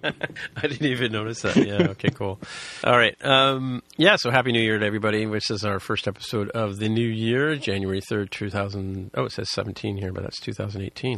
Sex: male